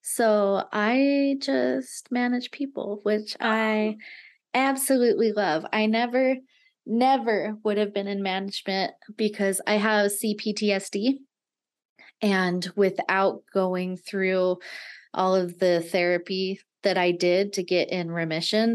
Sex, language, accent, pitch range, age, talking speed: female, English, American, 180-230 Hz, 20-39, 115 wpm